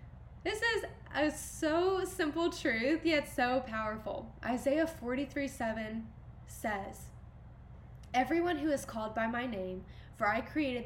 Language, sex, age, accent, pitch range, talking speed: English, female, 10-29, American, 220-285 Hz, 125 wpm